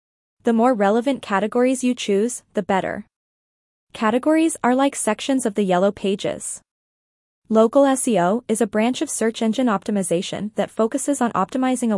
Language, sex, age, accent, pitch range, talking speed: English, female, 20-39, American, 200-255 Hz, 150 wpm